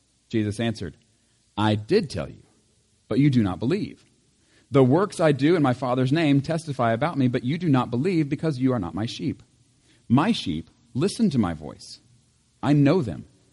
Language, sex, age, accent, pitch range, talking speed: English, male, 40-59, American, 115-150 Hz, 185 wpm